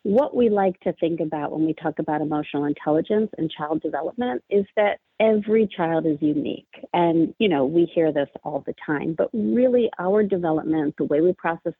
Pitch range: 160-215 Hz